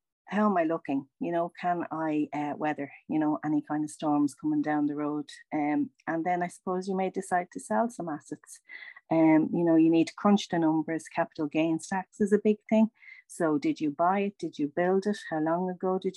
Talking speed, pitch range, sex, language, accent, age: 225 wpm, 150-195 Hz, female, English, Irish, 40-59